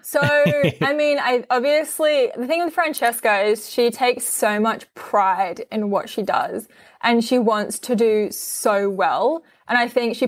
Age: 10-29